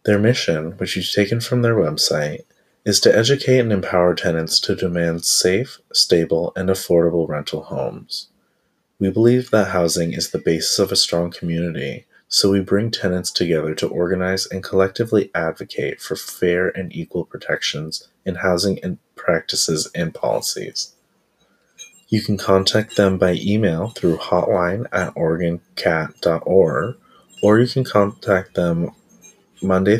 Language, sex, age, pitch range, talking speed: English, male, 30-49, 85-110 Hz, 140 wpm